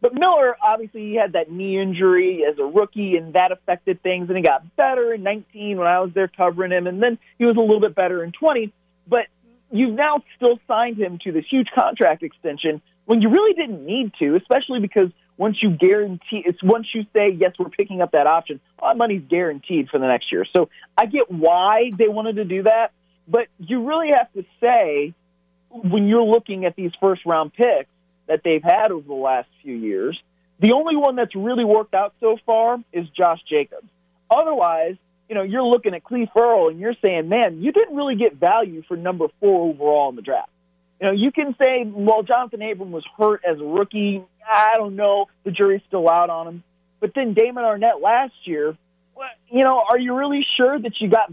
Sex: male